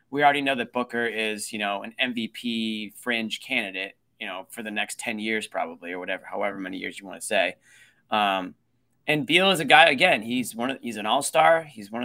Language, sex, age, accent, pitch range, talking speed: English, male, 20-39, American, 110-135 Hz, 210 wpm